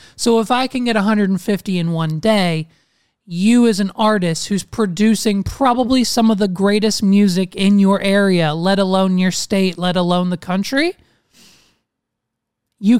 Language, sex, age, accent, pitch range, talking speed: English, male, 20-39, American, 180-225 Hz, 150 wpm